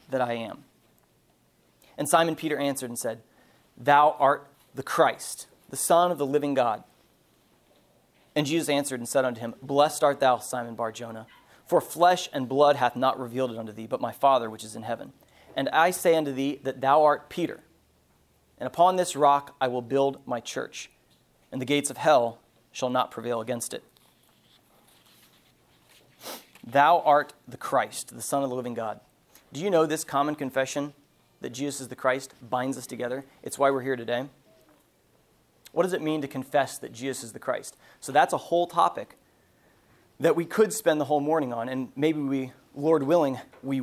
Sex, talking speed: male, 185 wpm